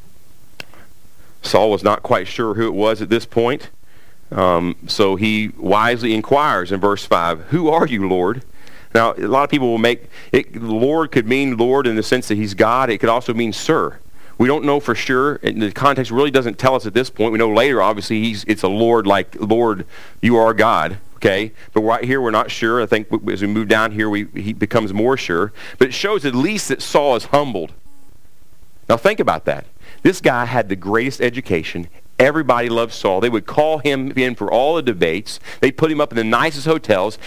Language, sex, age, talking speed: English, male, 40-59, 215 wpm